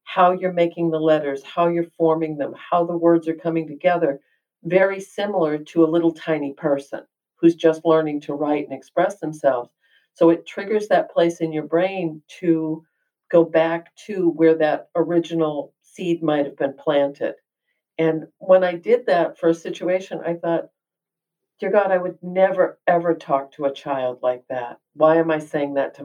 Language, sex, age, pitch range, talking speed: English, female, 50-69, 145-170 Hz, 175 wpm